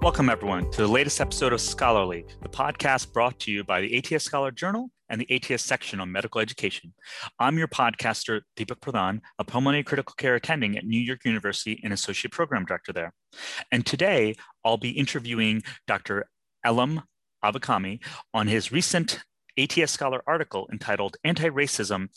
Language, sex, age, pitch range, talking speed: English, male, 30-49, 105-140 Hz, 160 wpm